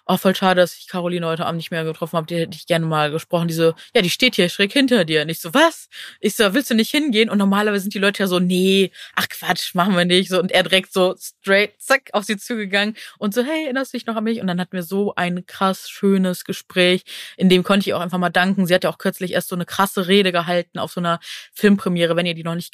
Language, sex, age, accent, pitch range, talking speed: German, female, 20-39, German, 160-190 Hz, 280 wpm